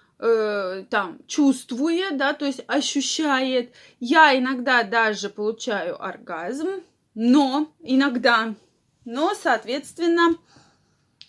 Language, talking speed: Russian, 85 wpm